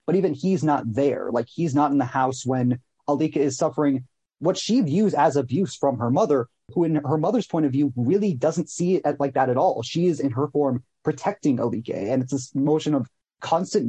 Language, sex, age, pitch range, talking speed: English, male, 30-49, 130-155 Hz, 220 wpm